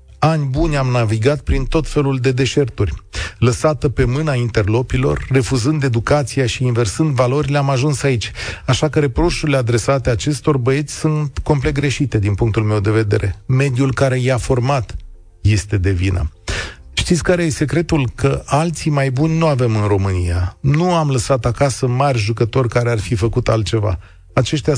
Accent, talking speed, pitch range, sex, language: native, 160 wpm, 110-140 Hz, male, Romanian